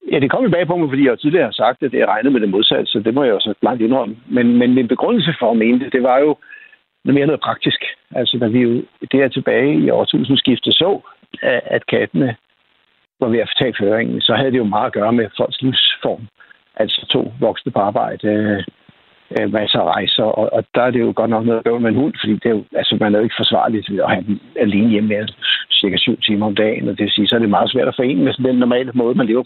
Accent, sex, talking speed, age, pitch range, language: native, male, 265 wpm, 60-79, 110-130 Hz, Danish